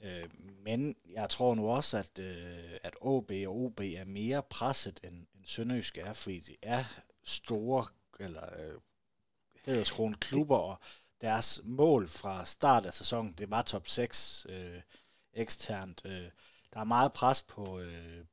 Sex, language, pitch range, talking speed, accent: male, Danish, 95-120 Hz, 140 wpm, native